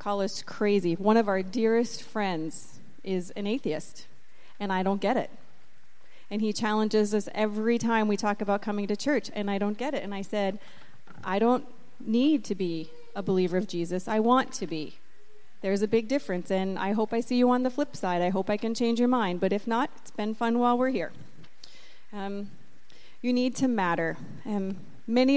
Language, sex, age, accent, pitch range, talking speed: English, female, 30-49, American, 200-245 Hz, 205 wpm